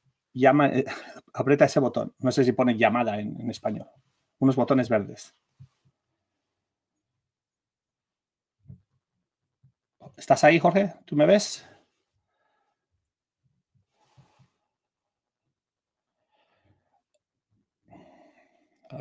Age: 30-49